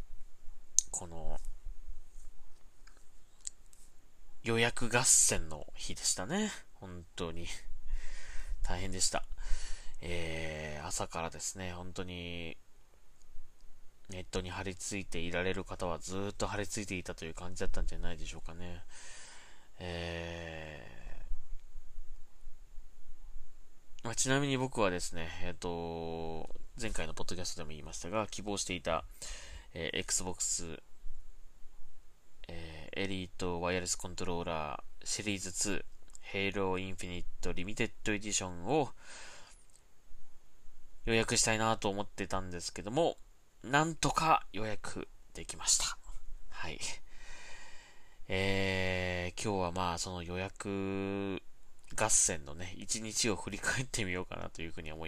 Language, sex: Japanese, male